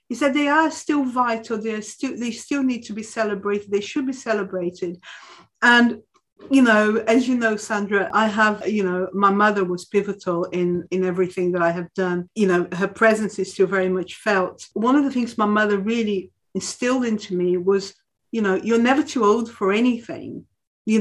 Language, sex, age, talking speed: English, female, 50-69, 190 wpm